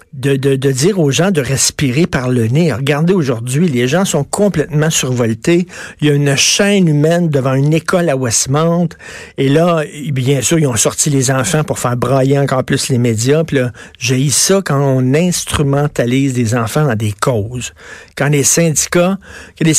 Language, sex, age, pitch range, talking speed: French, male, 60-79, 135-170 Hz, 180 wpm